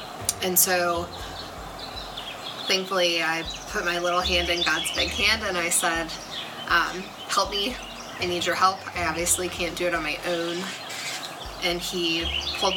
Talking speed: 155 wpm